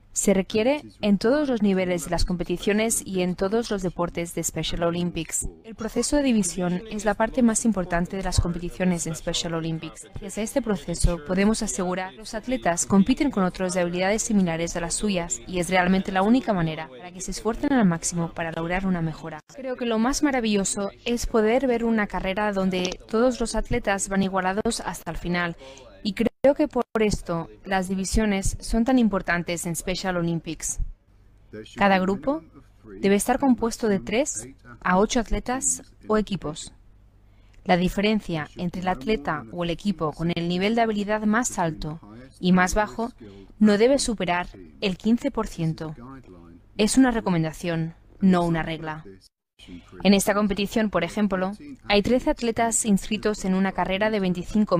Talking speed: 170 wpm